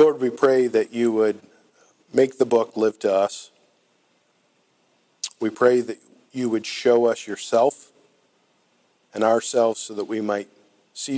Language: English